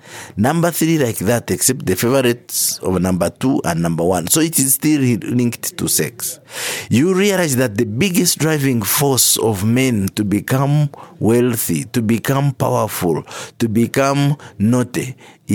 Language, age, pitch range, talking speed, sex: English, 50-69, 100-130 Hz, 145 wpm, male